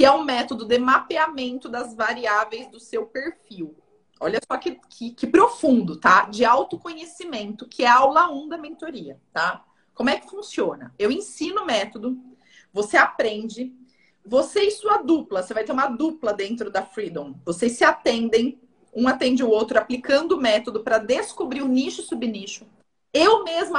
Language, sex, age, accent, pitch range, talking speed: Portuguese, female, 30-49, Brazilian, 220-315 Hz, 175 wpm